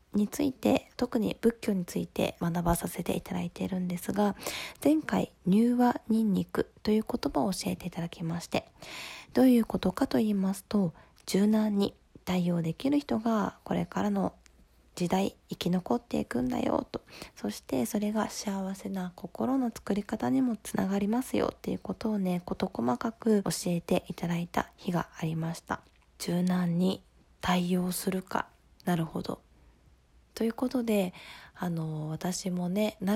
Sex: female